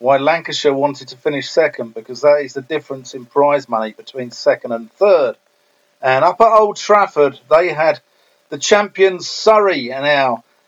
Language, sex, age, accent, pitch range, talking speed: English, male, 50-69, British, 140-190 Hz, 170 wpm